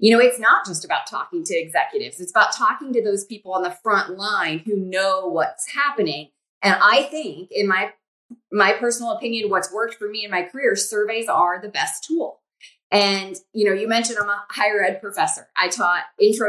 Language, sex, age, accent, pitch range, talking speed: English, female, 30-49, American, 195-280 Hz, 205 wpm